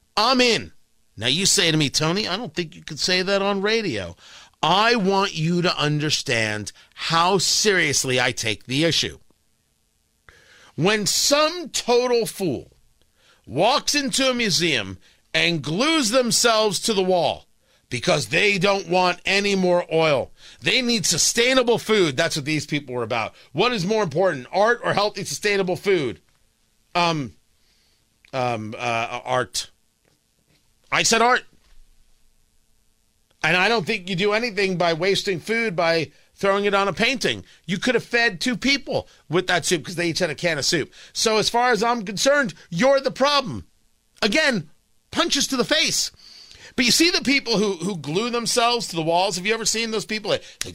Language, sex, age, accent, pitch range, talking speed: English, male, 40-59, American, 155-230 Hz, 165 wpm